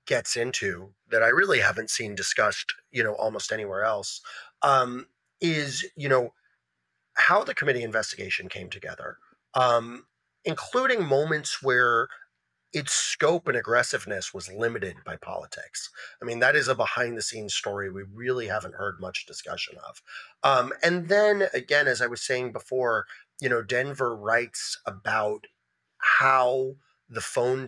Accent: American